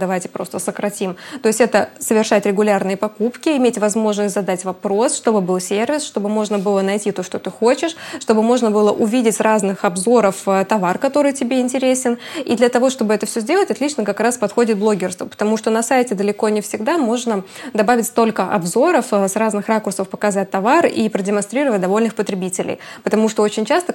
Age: 20-39